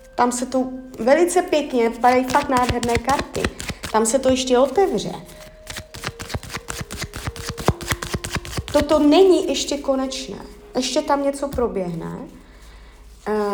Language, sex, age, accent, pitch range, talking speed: Czech, female, 30-49, native, 205-290 Hz, 100 wpm